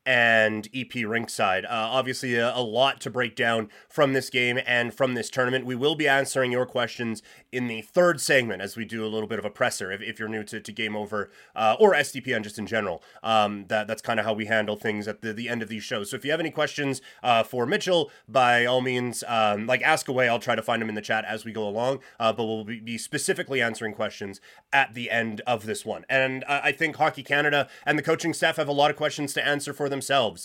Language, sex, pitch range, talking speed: English, male, 115-150 Hz, 250 wpm